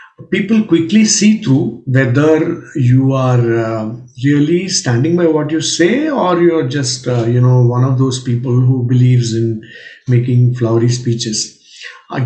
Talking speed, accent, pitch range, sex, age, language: 150 wpm, Indian, 120-160 Hz, male, 50-69, English